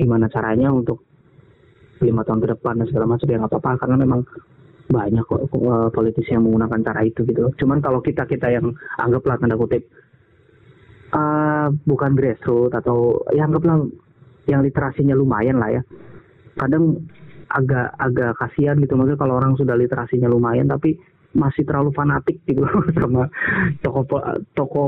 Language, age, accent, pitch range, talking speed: Indonesian, 30-49, native, 120-140 Hz, 145 wpm